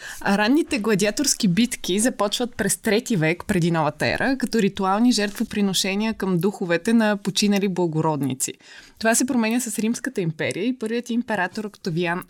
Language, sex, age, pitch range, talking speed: Bulgarian, female, 20-39, 180-225 Hz, 140 wpm